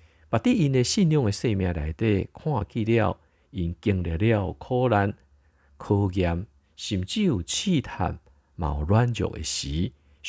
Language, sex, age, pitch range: Chinese, male, 50-69, 80-115 Hz